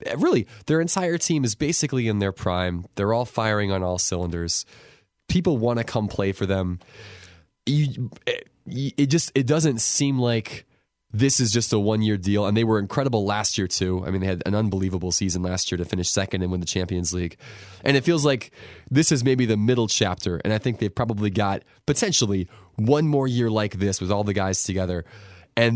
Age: 20-39